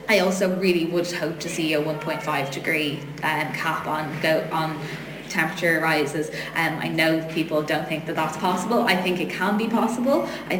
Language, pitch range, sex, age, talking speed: English, 160-190 Hz, female, 20-39, 190 wpm